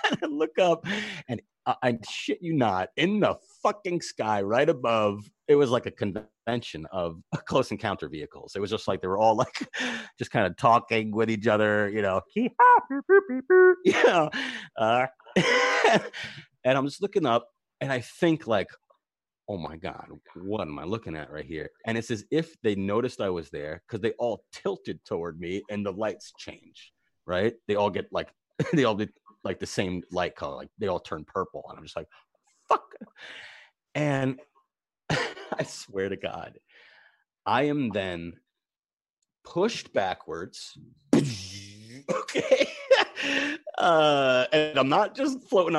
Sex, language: male, English